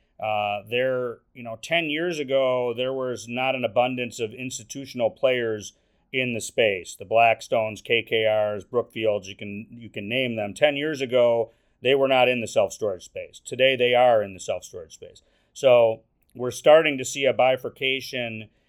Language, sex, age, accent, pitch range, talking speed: English, male, 40-59, American, 115-135 Hz, 165 wpm